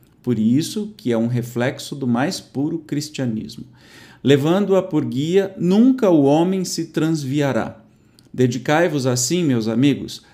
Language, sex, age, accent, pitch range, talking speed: Portuguese, male, 50-69, Brazilian, 120-170 Hz, 130 wpm